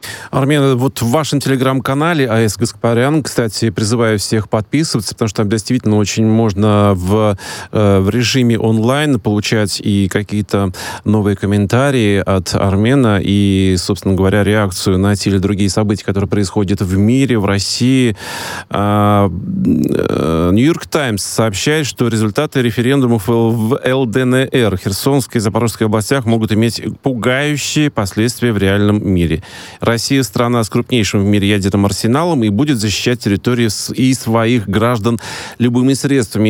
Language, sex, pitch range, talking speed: Russian, male, 100-125 Hz, 130 wpm